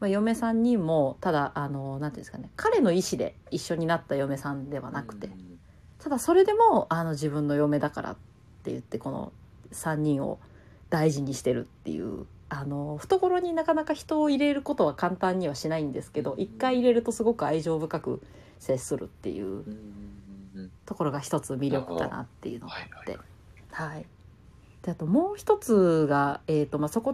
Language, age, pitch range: Japanese, 40-59, 140-235 Hz